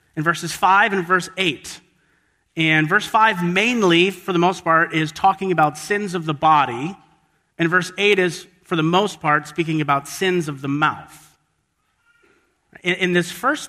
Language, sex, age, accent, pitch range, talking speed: English, male, 40-59, American, 150-180 Hz, 165 wpm